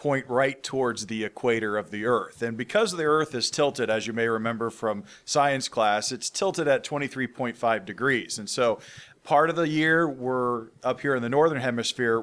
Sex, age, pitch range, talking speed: male, 40-59, 115-140 Hz, 190 wpm